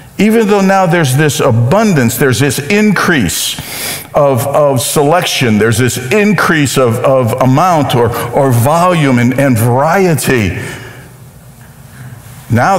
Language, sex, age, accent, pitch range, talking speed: English, male, 50-69, American, 145-200 Hz, 115 wpm